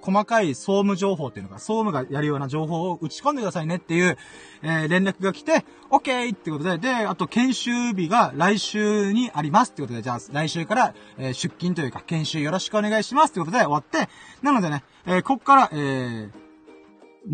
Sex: male